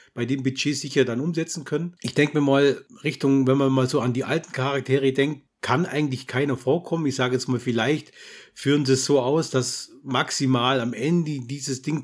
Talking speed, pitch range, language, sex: 205 wpm, 130-155 Hz, German, male